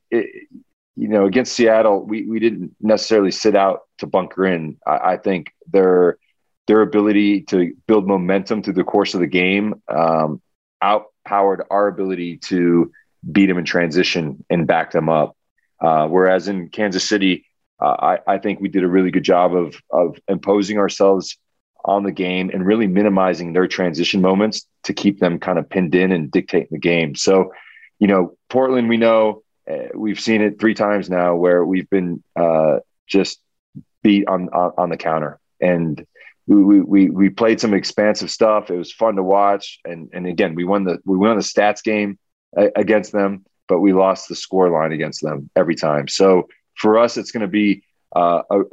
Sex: male